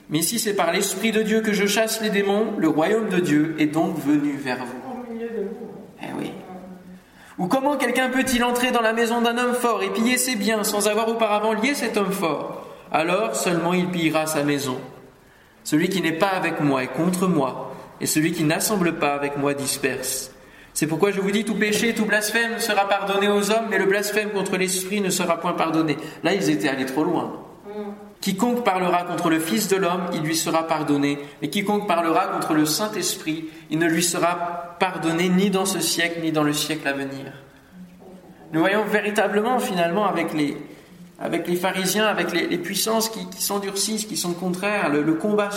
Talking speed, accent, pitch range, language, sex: 200 wpm, French, 160-210 Hz, French, male